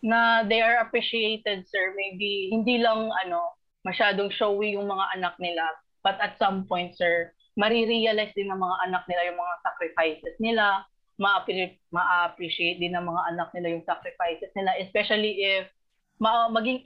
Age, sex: 20-39, female